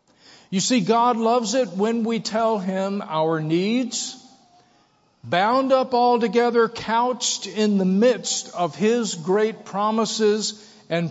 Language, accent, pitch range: English, American, 180-230 Hz